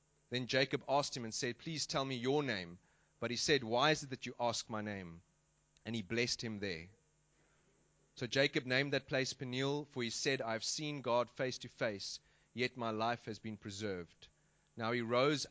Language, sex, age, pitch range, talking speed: English, male, 30-49, 115-140 Hz, 195 wpm